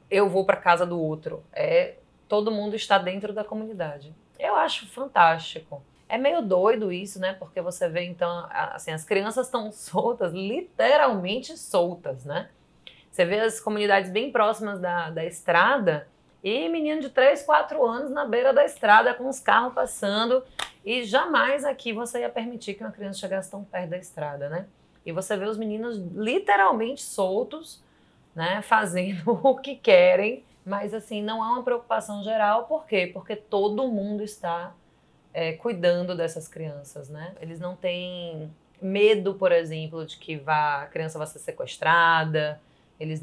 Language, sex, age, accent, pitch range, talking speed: Portuguese, female, 20-39, Brazilian, 165-220 Hz, 160 wpm